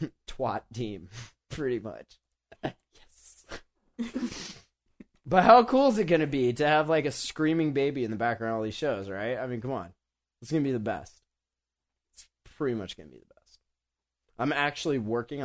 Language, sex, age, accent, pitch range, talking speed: English, male, 20-39, American, 105-150 Hz, 185 wpm